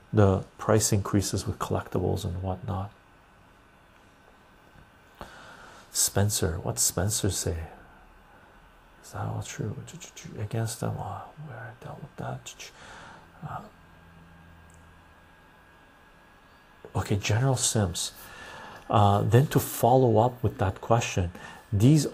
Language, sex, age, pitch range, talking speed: English, male, 40-59, 95-115 Hz, 90 wpm